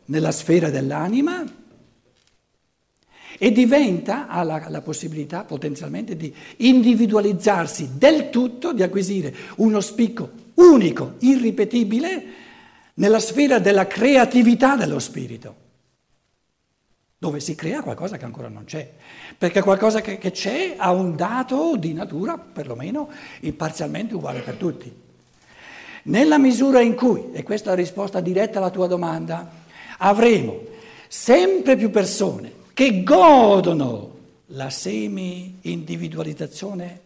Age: 60-79